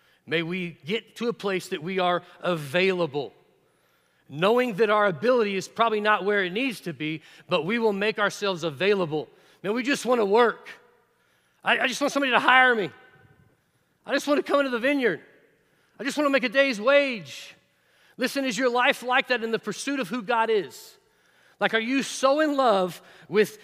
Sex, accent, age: male, American, 40-59